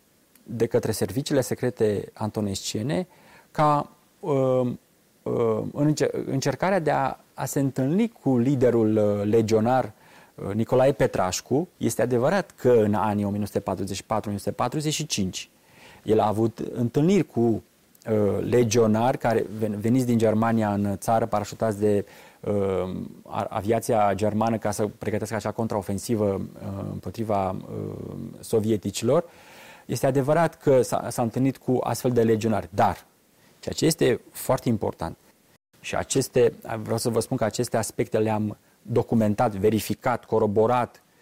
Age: 30-49